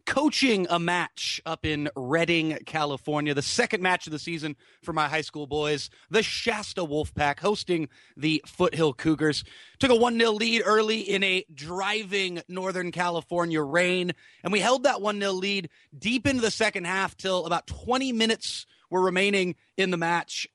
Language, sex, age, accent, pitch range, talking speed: English, male, 30-49, American, 160-220 Hz, 165 wpm